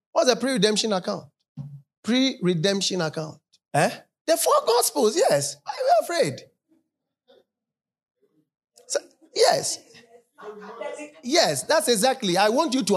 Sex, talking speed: male, 110 wpm